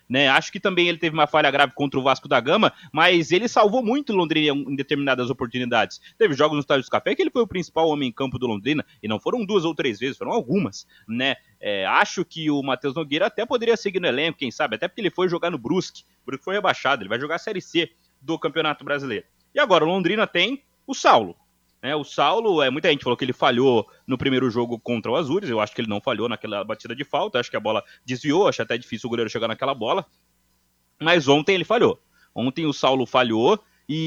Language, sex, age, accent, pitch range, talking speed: Portuguese, male, 30-49, Brazilian, 125-180 Hz, 235 wpm